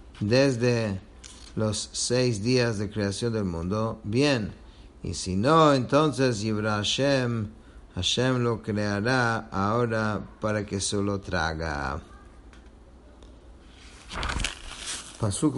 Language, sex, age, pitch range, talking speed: English, male, 50-69, 100-120 Hz, 95 wpm